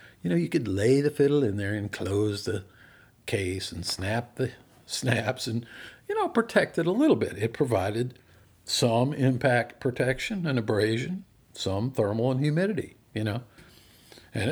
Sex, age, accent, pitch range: male, 50-69, American, 100-130 Hz